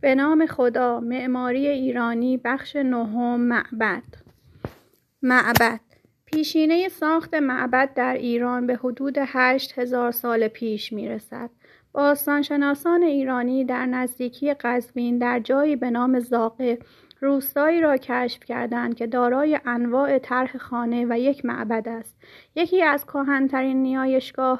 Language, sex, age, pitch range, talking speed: Persian, female, 30-49, 240-280 Hz, 115 wpm